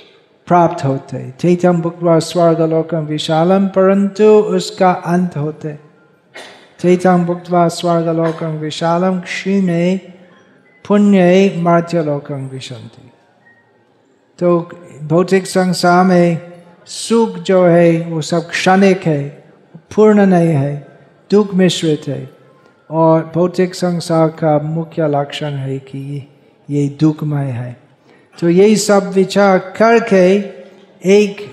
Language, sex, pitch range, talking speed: Hindi, male, 160-200 Hz, 100 wpm